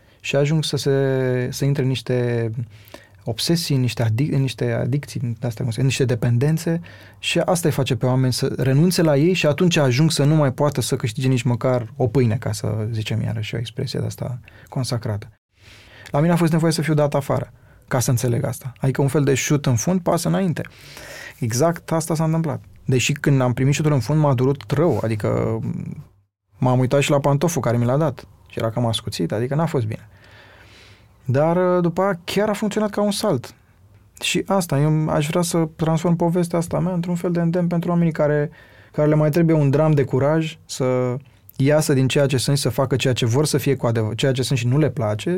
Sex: male